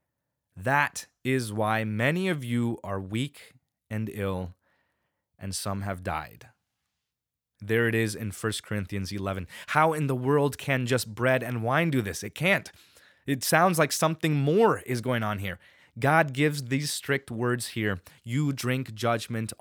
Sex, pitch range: male, 100-130 Hz